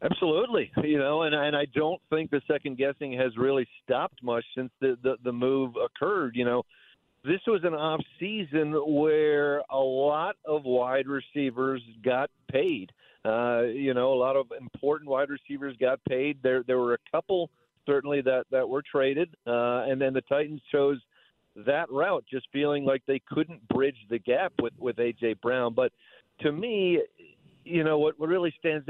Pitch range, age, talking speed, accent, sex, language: 125-150 Hz, 50-69, 180 wpm, American, male, English